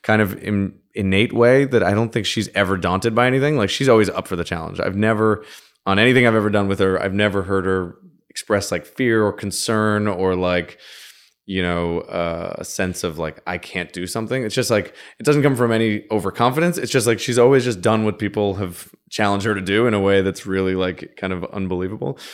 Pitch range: 95-120 Hz